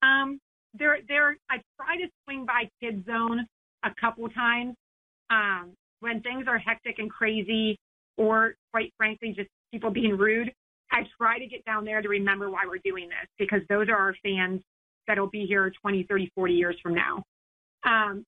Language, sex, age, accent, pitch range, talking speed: English, female, 30-49, American, 195-230 Hz, 175 wpm